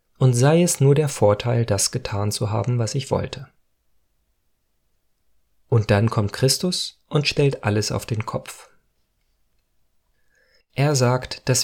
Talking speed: 135 wpm